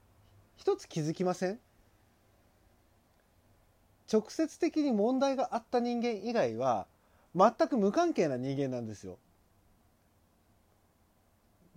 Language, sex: Japanese, male